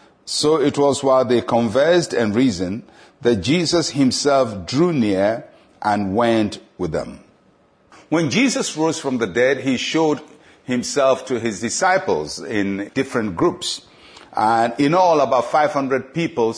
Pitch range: 120-150 Hz